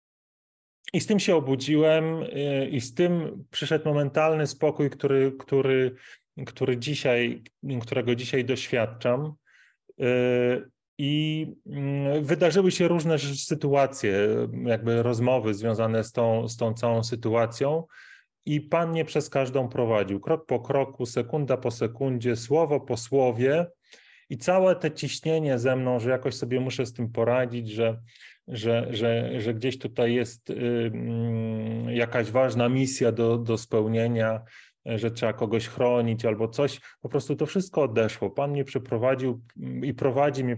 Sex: male